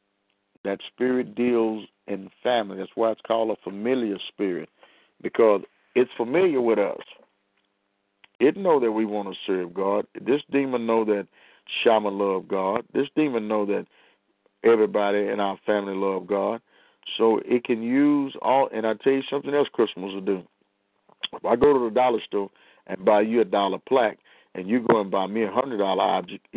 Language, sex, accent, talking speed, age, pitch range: English, male, American, 180 wpm, 50-69, 100-135 Hz